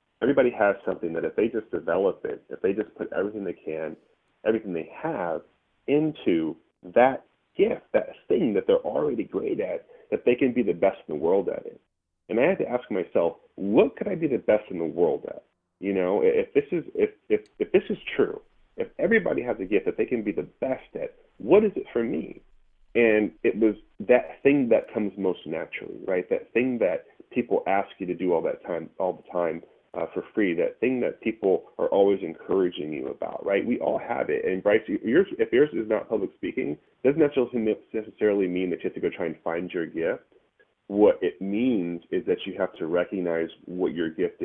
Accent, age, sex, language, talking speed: American, 30-49, male, English, 215 wpm